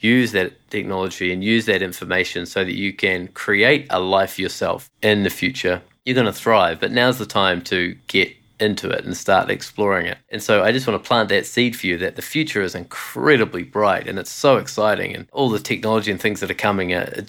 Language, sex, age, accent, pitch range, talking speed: English, male, 20-39, Australian, 95-110 Hz, 230 wpm